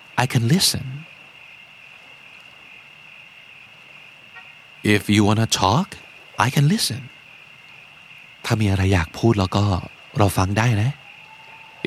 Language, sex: Thai, male